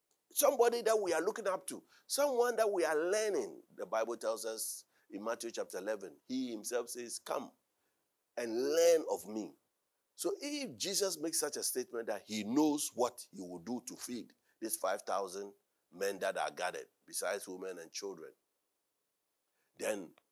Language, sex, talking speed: English, male, 160 wpm